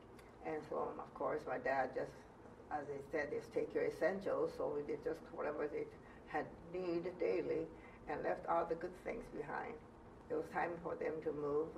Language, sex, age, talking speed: English, female, 60-79, 190 wpm